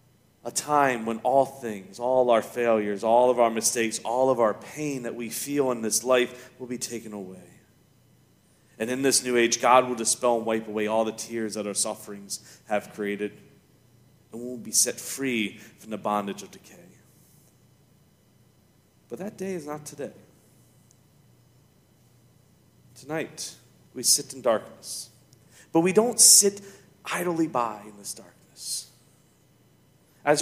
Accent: American